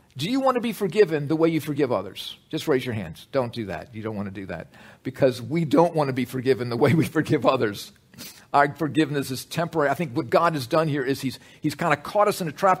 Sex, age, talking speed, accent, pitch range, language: male, 50-69, 265 wpm, American, 115-155 Hz, English